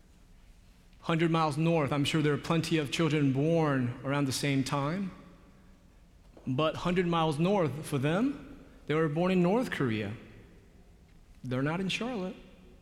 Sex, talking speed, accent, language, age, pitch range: male, 145 wpm, American, English, 30-49, 130-165 Hz